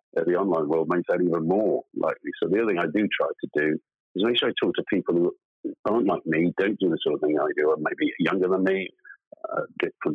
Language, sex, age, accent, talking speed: English, male, 50-69, British, 255 wpm